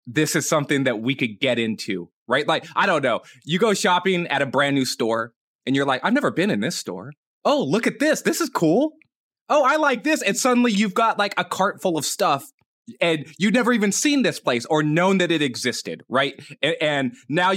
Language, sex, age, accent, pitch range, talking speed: English, male, 20-39, American, 125-185 Hz, 225 wpm